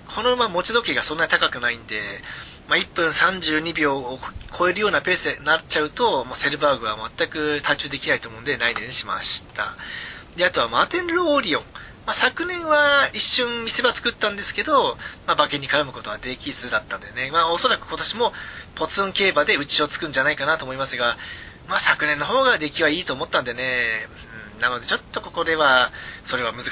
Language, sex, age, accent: Japanese, male, 20-39, native